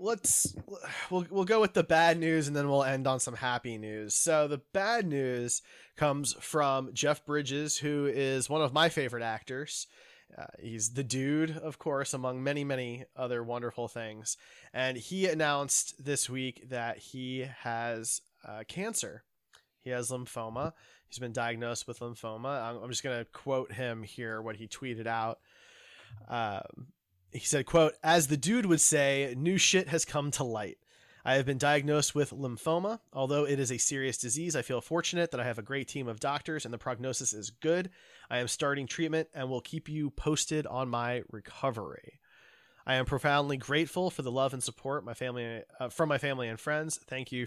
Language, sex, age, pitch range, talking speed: English, male, 20-39, 120-150 Hz, 185 wpm